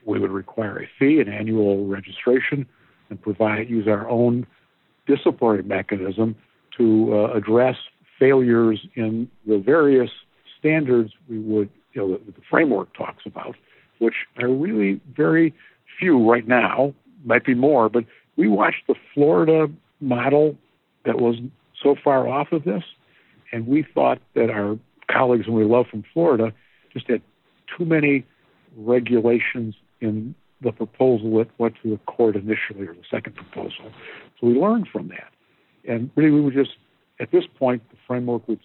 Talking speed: 155 wpm